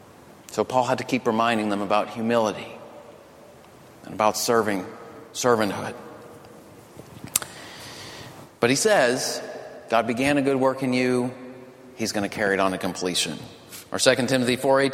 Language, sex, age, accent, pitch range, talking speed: English, male, 40-59, American, 115-180 Hz, 135 wpm